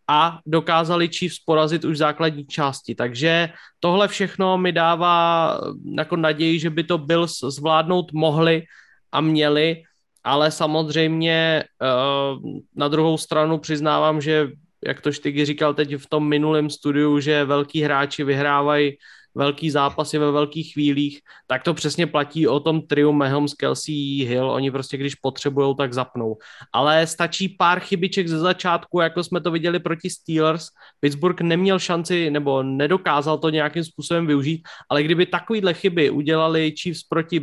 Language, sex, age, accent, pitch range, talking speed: Czech, male, 20-39, native, 145-175 Hz, 145 wpm